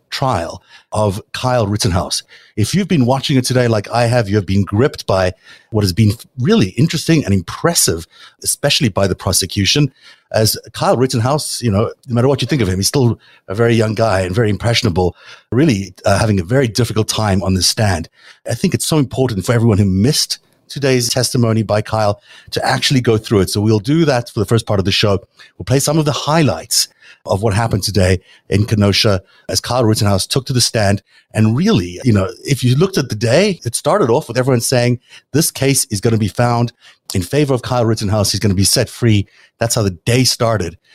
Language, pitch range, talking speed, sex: English, 100-130 Hz, 215 wpm, male